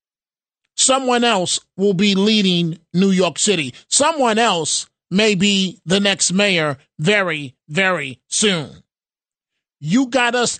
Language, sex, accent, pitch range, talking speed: English, male, American, 155-210 Hz, 120 wpm